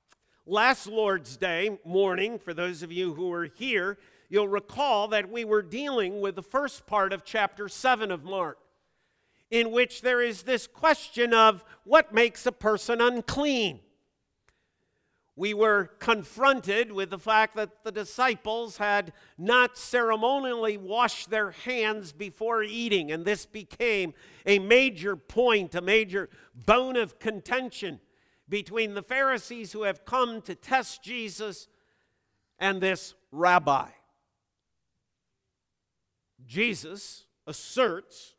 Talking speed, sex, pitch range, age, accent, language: 125 wpm, male, 195-240 Hz, 50-69, American, English